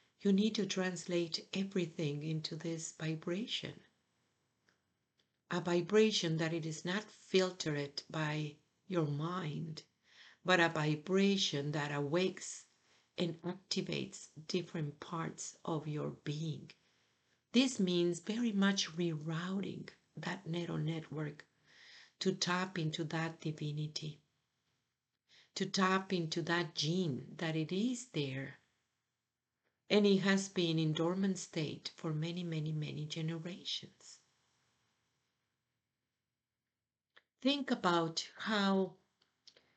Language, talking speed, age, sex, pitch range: English, 100 wpm, 50-69, female, 155-195 Hz